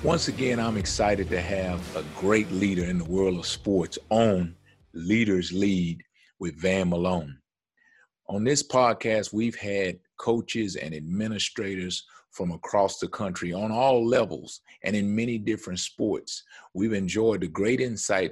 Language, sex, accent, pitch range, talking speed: English, male, American, 90-110 Hz, 145 wpm